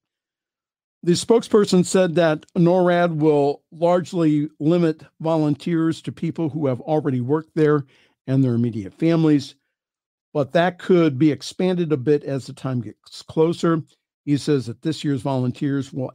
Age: 50-69